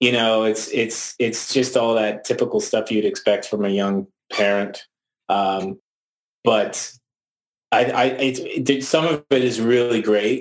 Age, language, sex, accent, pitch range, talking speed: 30-49, English, male, American, 100-115 Hz, 160 wpm